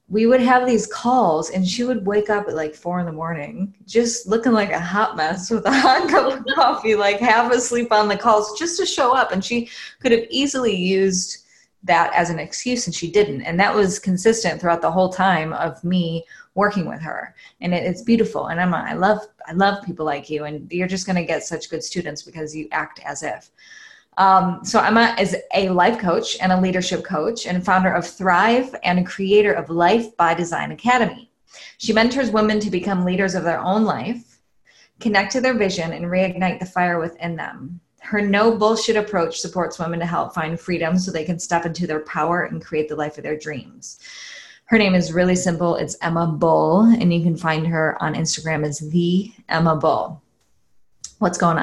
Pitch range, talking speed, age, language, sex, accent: 170-220 Hz, 205 wpm, 20-39, English, female, American